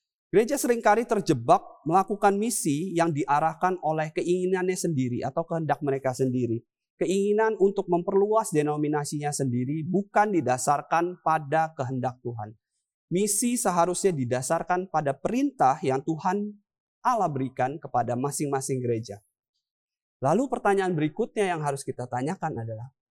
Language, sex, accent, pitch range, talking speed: Indonesian, male, native, 130-190 Hz, 115 wpm